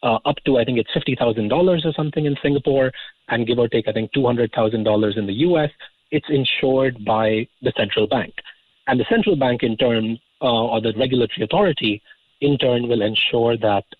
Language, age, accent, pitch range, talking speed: English, 30-49, Indian, 115-150 Hz, 185 wpm